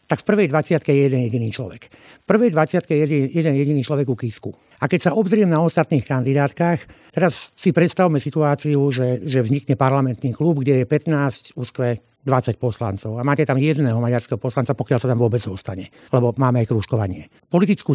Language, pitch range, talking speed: Slovak, 125-155 Hz, 185 wpm